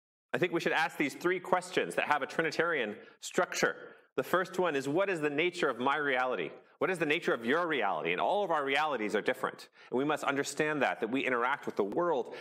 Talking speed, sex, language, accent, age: 235 wpm, male, English, American, 30-49